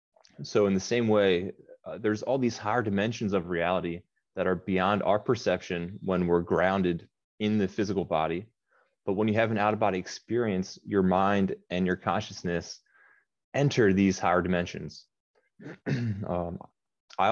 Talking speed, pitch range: 150 wpm, 90-105 Hz